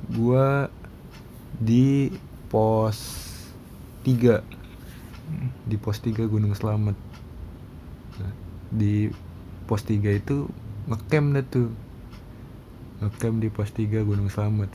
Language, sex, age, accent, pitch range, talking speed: Indonesian, male, 20-39, native, 105-120 Hz, 95 wpm